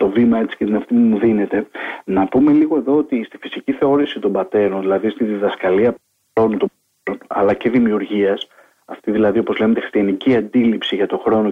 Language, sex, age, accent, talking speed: Greek, male, 40-59, native, 180 wpm